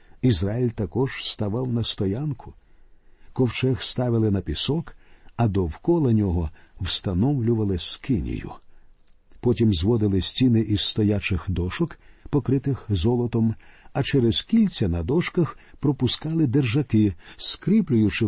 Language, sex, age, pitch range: Ukrainian, male, 50-69, 100-135 Hz